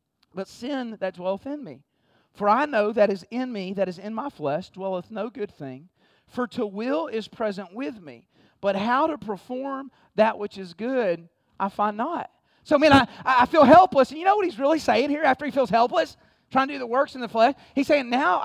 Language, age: English, 40-59